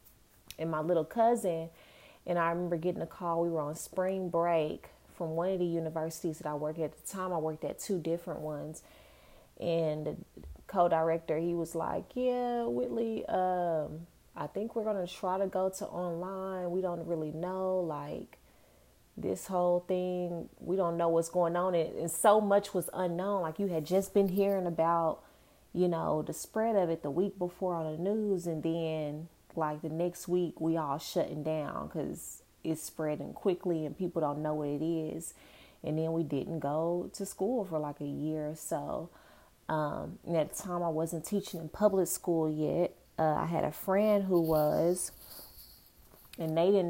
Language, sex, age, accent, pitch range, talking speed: English, female, 30-49, American, 155-185 Hz, 185 wpm